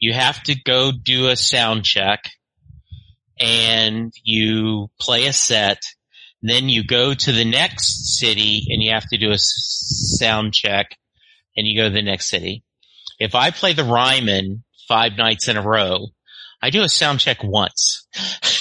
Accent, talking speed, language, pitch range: American, 165 wpm, English, 110-140 Hz